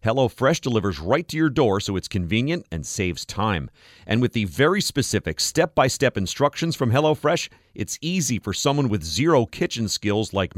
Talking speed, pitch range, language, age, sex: 170 wpm, 100-145 Hz, English, 40-59, male